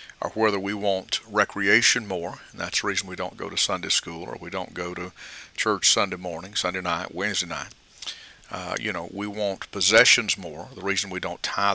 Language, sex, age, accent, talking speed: English, male, 50-69, American, 205 wpm